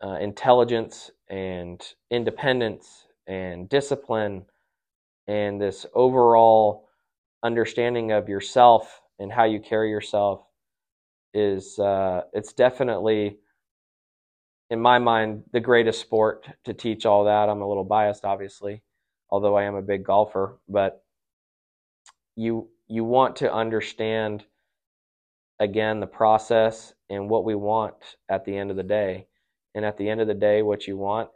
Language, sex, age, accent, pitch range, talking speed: English, male, 20-39, American, 100-110 Hz, 135 wpm